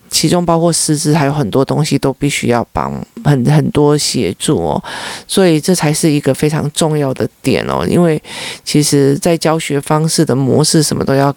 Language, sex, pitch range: Chinese, male, 140-165 Hz